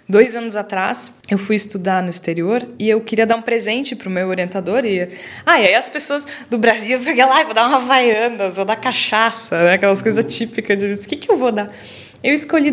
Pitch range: 185-225 Hz